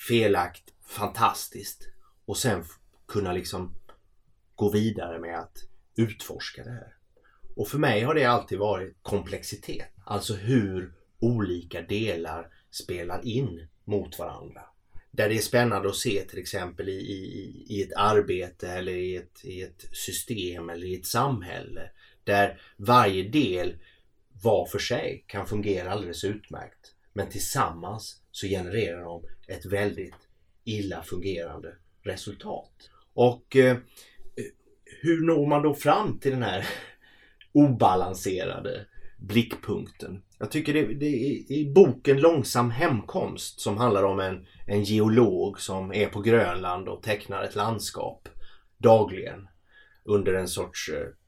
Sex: male